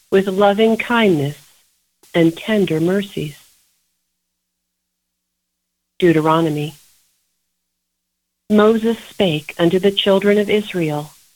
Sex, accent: female, American